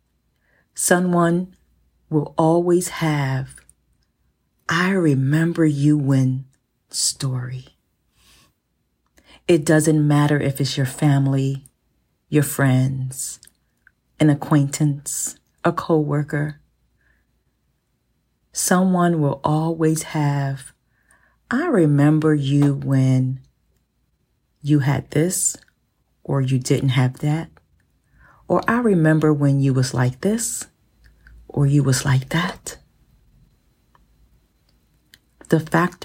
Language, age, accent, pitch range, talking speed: English, 40-59, American, 135-160 Hz, 90 wpm